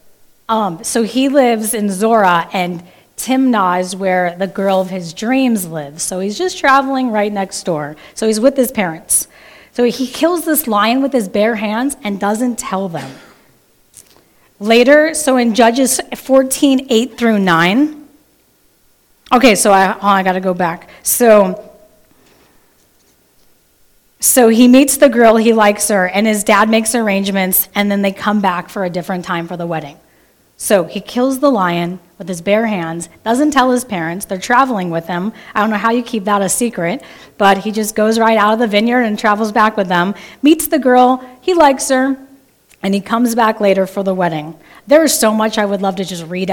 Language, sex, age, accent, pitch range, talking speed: English, female, 30-49, American, 185-240 Hz, 190 wpm